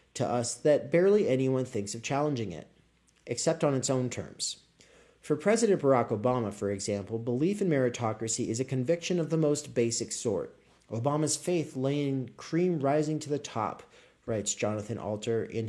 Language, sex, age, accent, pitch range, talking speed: English, male, 40-59, American, 115-150 Hz, 165 wpm